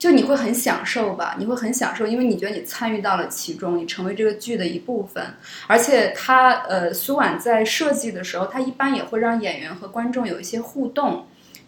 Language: Chinese